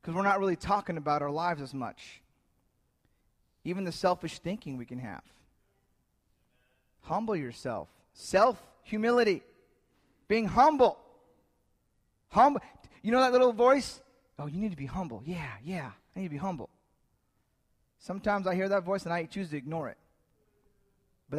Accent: American